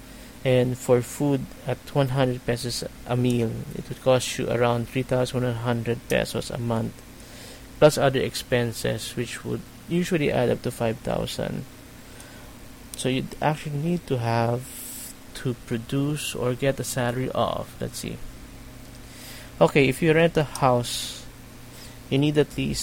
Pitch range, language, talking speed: 120-130 Hz, English, 135 wpm